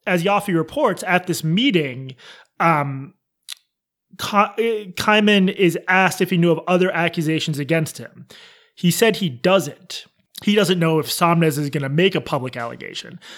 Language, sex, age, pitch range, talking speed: English, male, 30-49, 155-200 Hz, 155 wpm